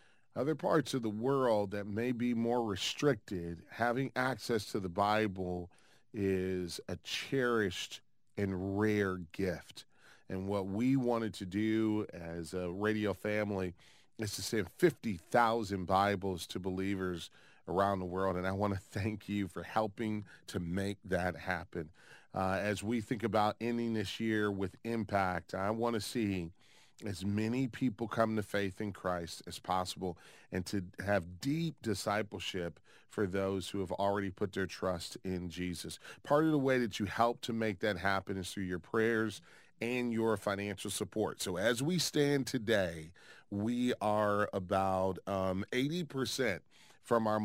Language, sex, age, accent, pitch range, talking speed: English, male, 40-59, American, 95-115 Hz, 155 wpm